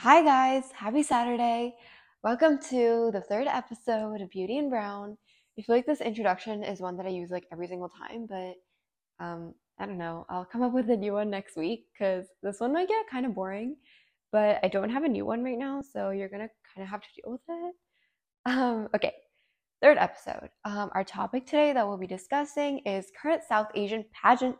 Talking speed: 205 wpm